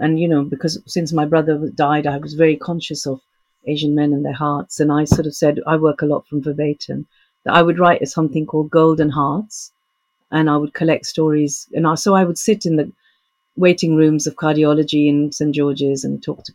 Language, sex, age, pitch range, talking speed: English, female, 50-69, 145-180 Hz, 215 wpm